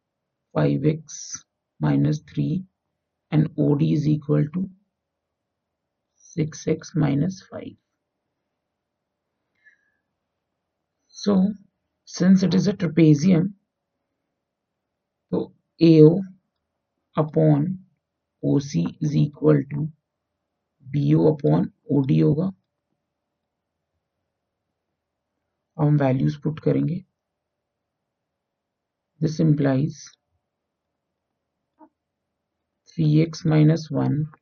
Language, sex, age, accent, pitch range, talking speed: Hindi, male, 50-69, native, 135-160 Hz, 65 wpm